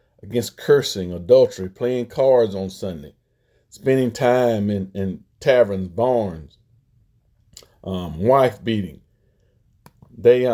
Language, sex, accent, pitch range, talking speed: English, male, American, 110-145 Hz, 95 wpm